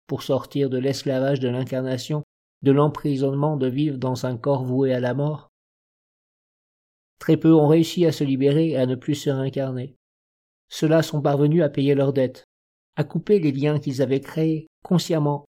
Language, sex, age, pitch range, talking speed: French, male, 50-69, 135-155 Hz, 175 wpm